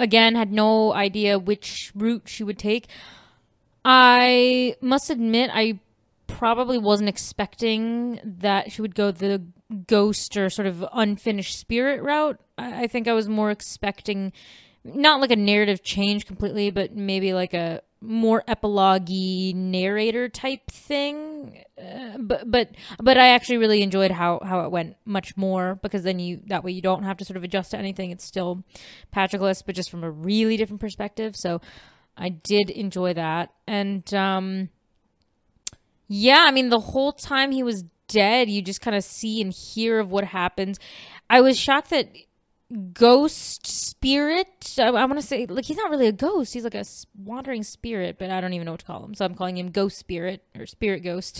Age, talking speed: 20-39, 175 wpm